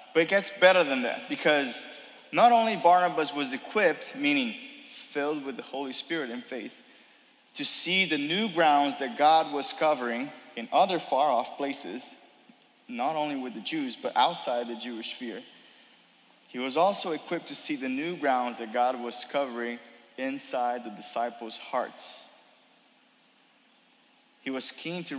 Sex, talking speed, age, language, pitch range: male, 155 wpm, 20-39, English, 125-190 Hz